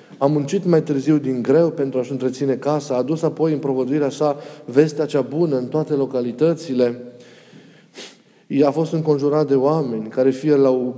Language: Romanian